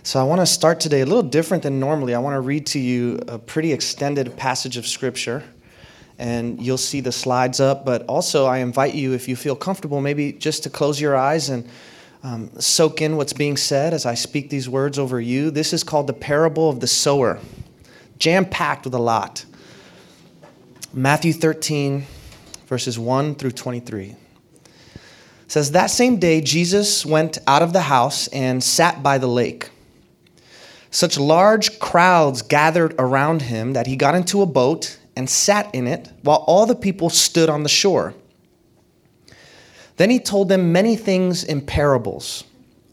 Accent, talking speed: American, 175 wpm